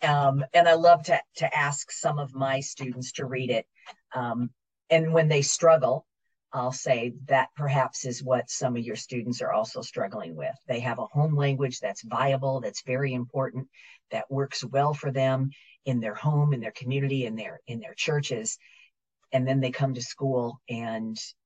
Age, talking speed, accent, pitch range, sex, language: 50-69, 185 wpm, American, 125-145 Hz, female, English